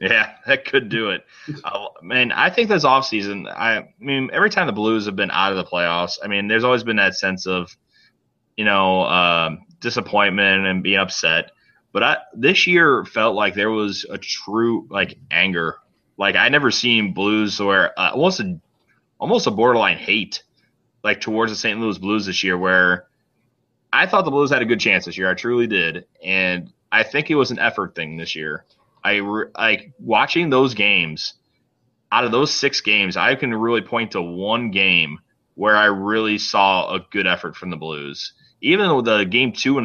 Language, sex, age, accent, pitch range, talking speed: English, male, 20-39, American, 95-120 Hz, 195 wpm